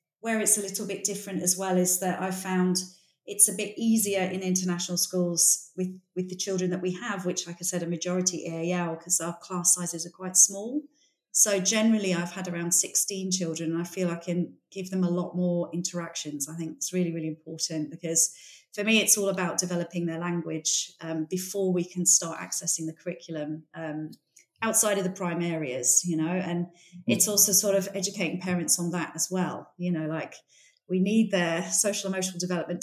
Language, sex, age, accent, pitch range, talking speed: English, female, 30-49, British, 170-195 Hz, 200 wpm